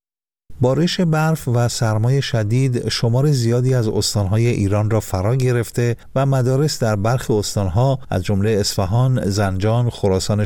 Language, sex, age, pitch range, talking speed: Persian, male, 50-69, 95-120 Hz, 130 wpm